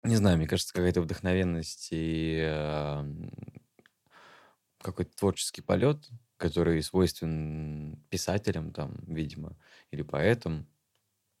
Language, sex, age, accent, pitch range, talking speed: Russian, male, 20-39, native, 75-100 Hz, 85 wpm